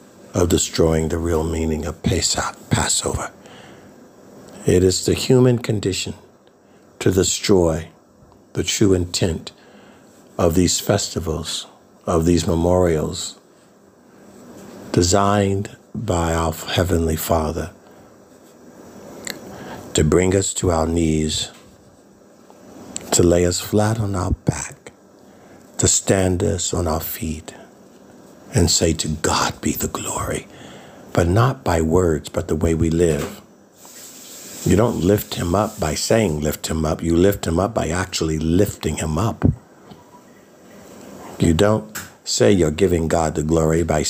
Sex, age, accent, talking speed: male, 60-79, American, 125 wpm